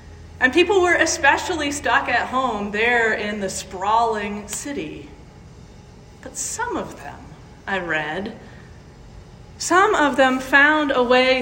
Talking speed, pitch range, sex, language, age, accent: 125 wpm, 210-285 Hz, female, English, 40-59, American